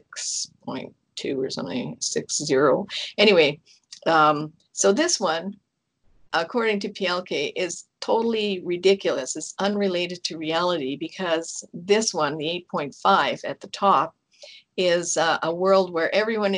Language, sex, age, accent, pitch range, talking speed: English, female, 50-69, American, 160-200 Hz, 140 wpm